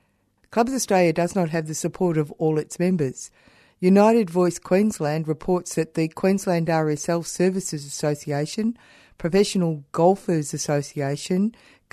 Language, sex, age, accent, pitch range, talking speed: English, female, 50-69, Australian, 145-175 Hz, 120 wpm